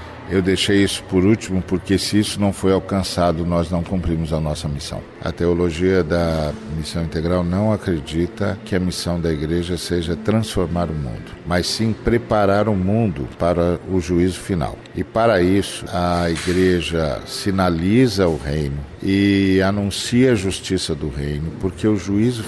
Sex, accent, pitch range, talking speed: male, Brazilian, 85-100 Hz, 160 wpm